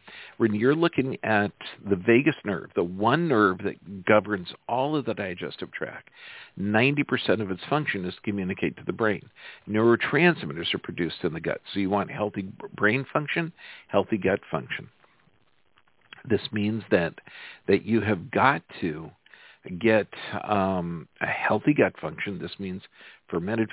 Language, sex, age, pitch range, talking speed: English, male, 50-69, 95-125 Hz, 150 wpm